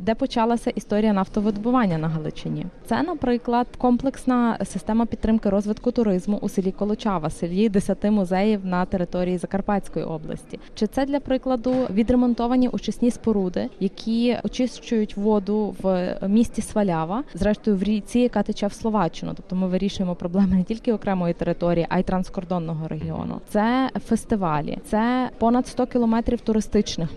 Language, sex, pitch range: Ukrainian, female, 185-230 Hz